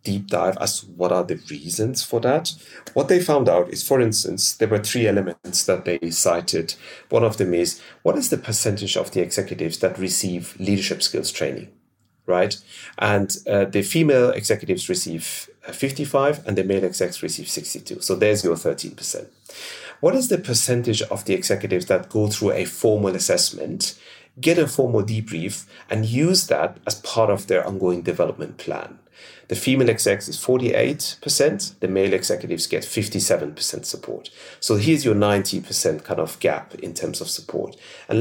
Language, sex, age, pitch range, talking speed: English, male, 30-49, 100-135 Hz, 170 wpm